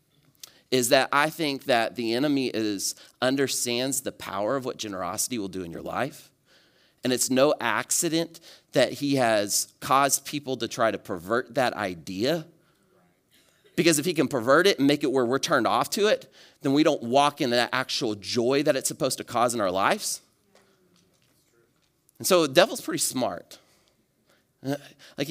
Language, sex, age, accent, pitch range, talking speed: English, male, 30-49, American, 120-155 Hz, 170 wpm